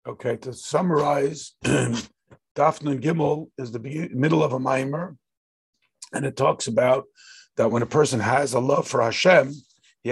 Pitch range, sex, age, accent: 140-200 Hz, male, 50-69, American